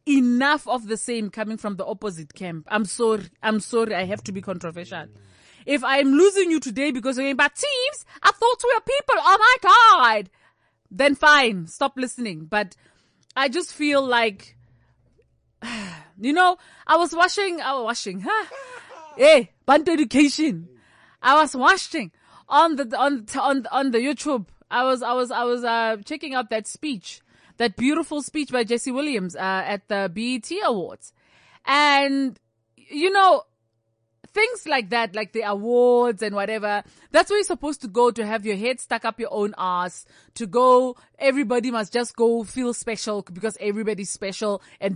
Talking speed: 170 wpm